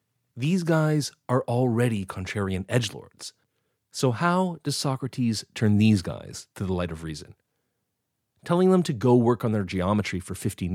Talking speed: 155 wpm